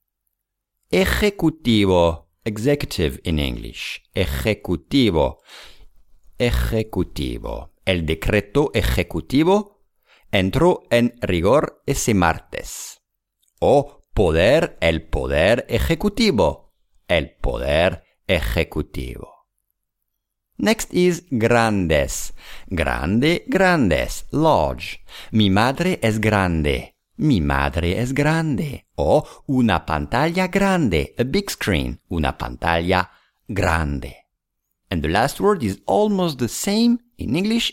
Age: 50-69